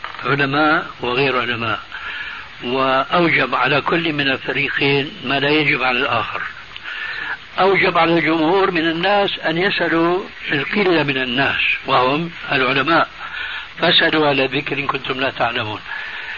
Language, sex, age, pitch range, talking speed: Arabic, male, 60-79, 140-180 Hz, 115 wpm